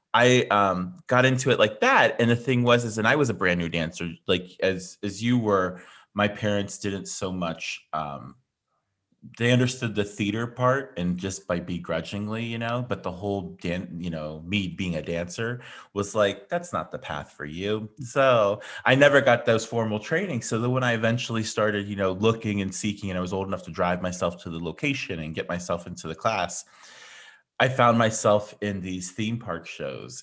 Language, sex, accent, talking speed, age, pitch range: English, male, American, 200 wpm, 30-49, 90-120 Hz